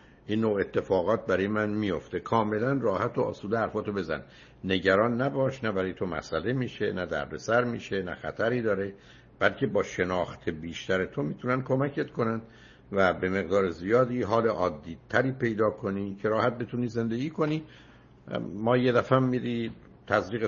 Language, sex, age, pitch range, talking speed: Persian, male, 60-79, 90-125 Hz, 150 wpm